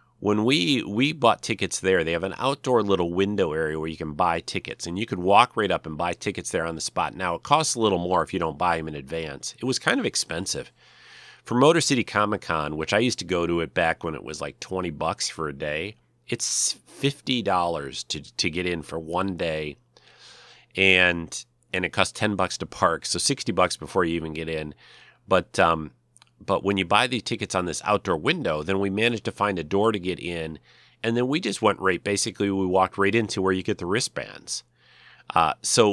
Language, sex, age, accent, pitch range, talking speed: English, male, 40-59, American, 80-105 Hz, 225 wpm